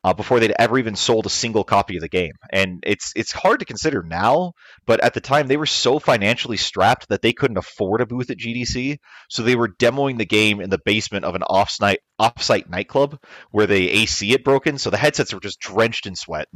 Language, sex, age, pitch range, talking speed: English, male, 30-49, 100-130 Hz, 230 wpm